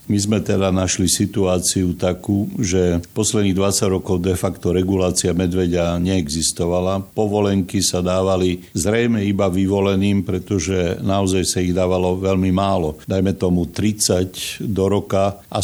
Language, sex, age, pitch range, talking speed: Slovak, male, 60-79, 90-100 Hz, 130 wpm